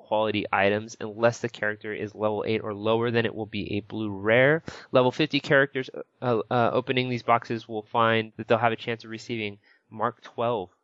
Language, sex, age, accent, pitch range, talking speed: English, male, 20-39, American, 105-145 Hz, 200 wpm